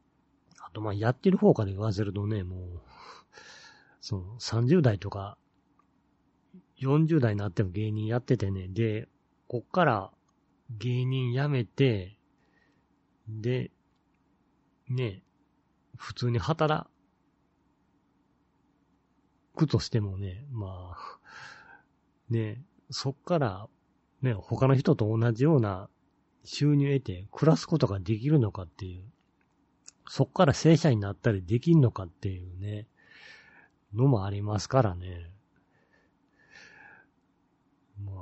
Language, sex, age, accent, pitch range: Japanese, male, 40-59, native, 100-135 Hz